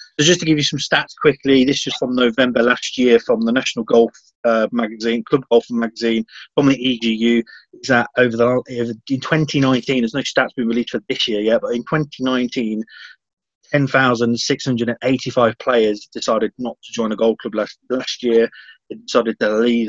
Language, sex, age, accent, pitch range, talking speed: English, male, 30-49, British, 115-130 Hz, 195 wpm